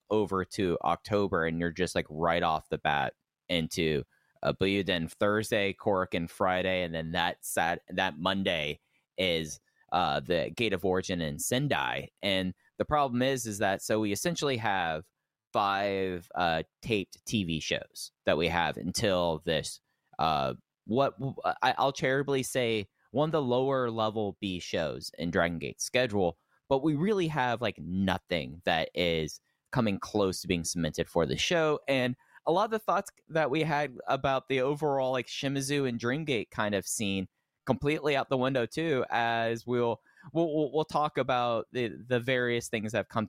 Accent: American